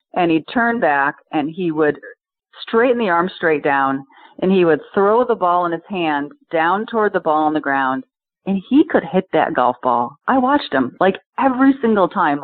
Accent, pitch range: American, 150-195 Hz